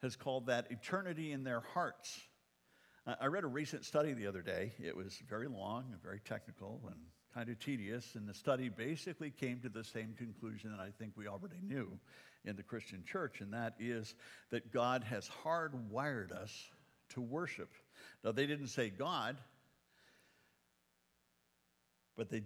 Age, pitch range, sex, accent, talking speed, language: 60-79, 100-135 Hz, male, American, 165 wpm, English